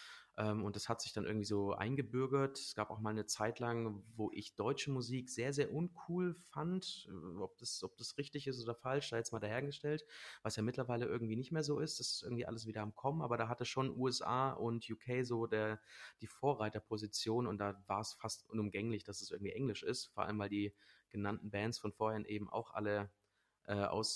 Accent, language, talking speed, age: German, German, 205 wpm, 30-49